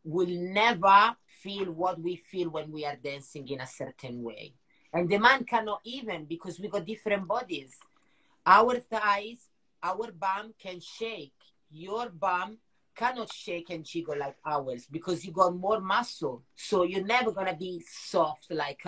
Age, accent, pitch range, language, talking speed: 30-49, Italian, 150-200 Hz, English, 160 wpm